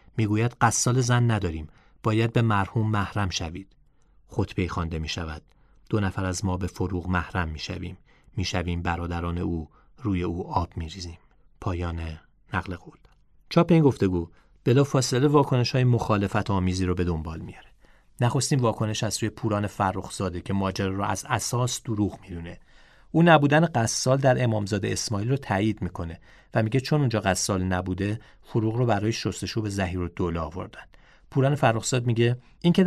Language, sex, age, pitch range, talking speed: Persian, male, 40-59, 90-115 Hz, 155 wpm